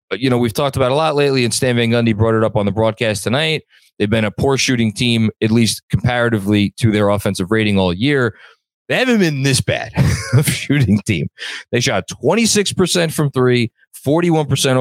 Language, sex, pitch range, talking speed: English, male, 100-135 Hz, 205 wpm